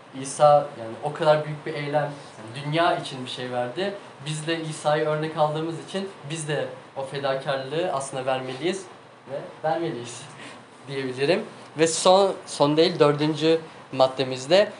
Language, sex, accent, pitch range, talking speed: Turkish, male, native, 140-160 Hz, 135 wpm